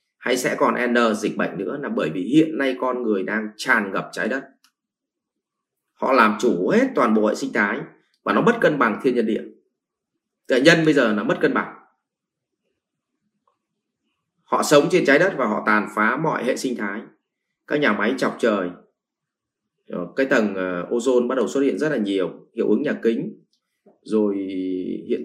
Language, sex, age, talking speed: English, male, 20-39, 185 wpm